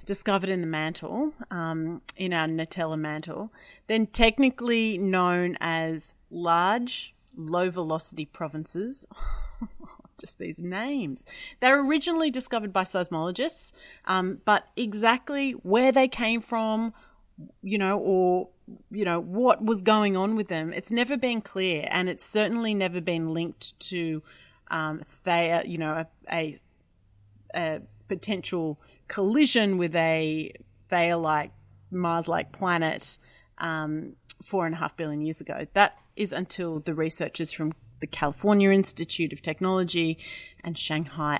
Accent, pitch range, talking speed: Australian, 160-205 Hz, 125 wpm